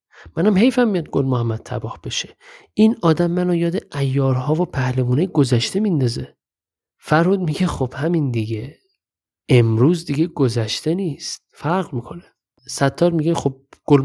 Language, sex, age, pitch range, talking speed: Persian, male, 50-69, 120-180 Hz, 135 wpm